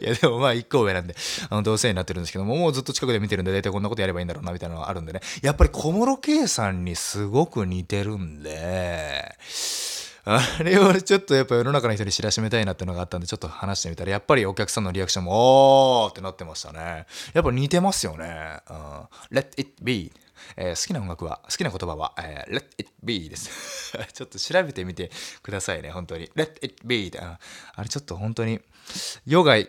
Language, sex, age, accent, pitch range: Japanese, male, 20-39, native, 90-135 Hz